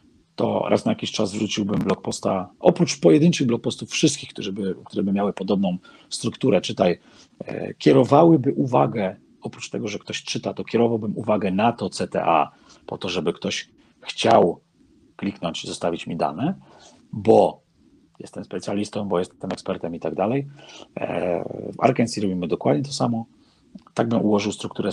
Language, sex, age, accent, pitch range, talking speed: Polish, male, 40-59, native, 95-125 Hz, 150 wpm